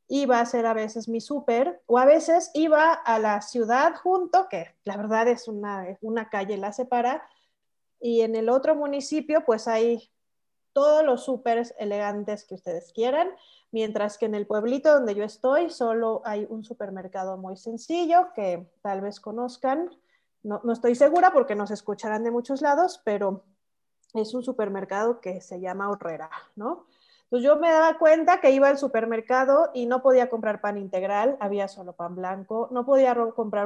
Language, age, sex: Spanish, 30-49, female